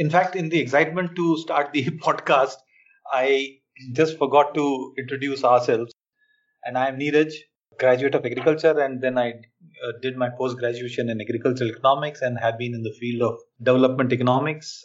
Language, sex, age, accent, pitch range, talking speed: English, male, 30-49, Indian, 125-155 Hz, 165 wpm